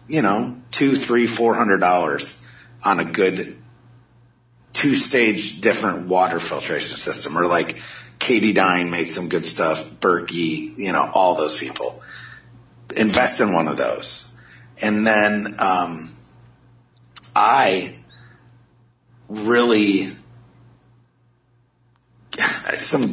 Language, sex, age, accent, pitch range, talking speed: English, male, 30-49, American, 100-120 Hz, 105 wpm